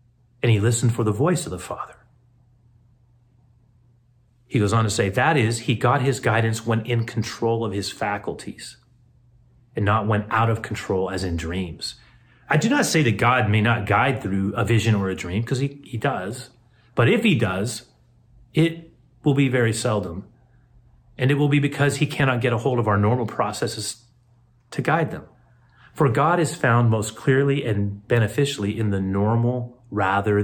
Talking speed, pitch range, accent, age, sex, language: 180 wpm, 110-125 Hz, American, 30-49, male, English